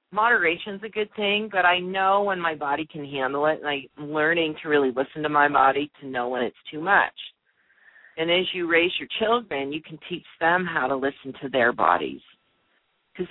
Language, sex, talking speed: English, female, 205 wpm